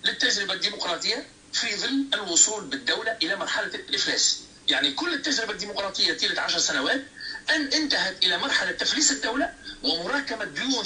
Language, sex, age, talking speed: Arabic, male, 50-69, 135 wpm